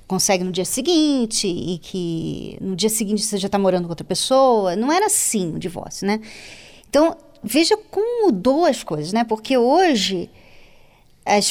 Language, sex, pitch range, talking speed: Portuguese, female, 215-305 Hz, 165 wpm